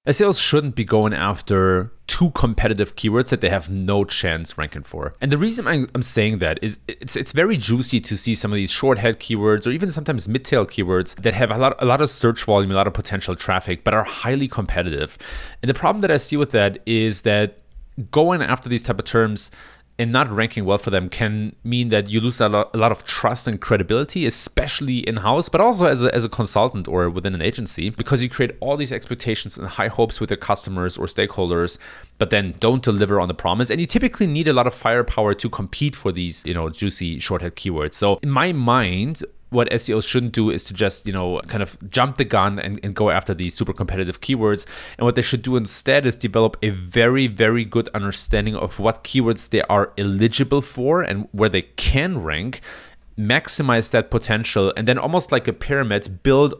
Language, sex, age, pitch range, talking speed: English, male, 30-49, 100-125 Hz, 215 wpm